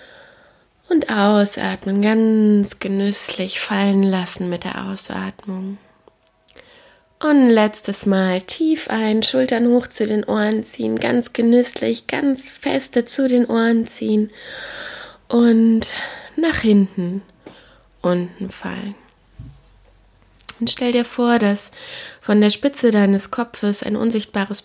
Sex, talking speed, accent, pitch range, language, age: female, 110 wpm, German, 195-235 Hz, German, 20-39